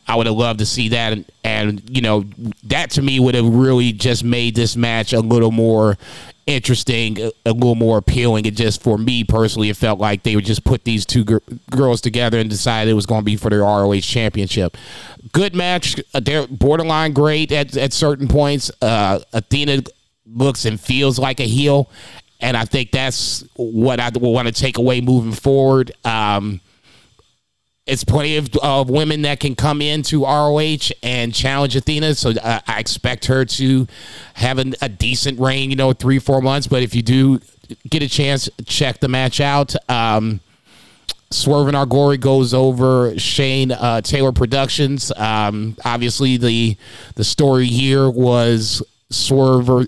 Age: 30-49